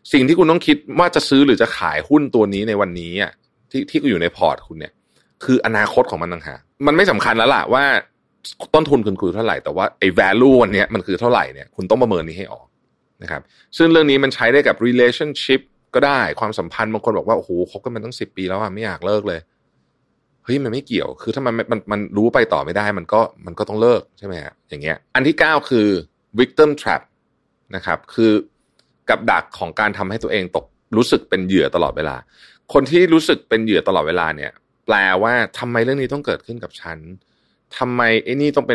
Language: Thai